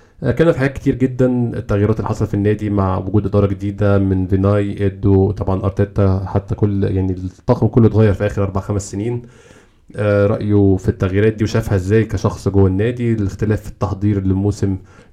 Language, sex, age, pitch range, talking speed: Arabic, male, 20-39, 100-115 Hz, 170 wpm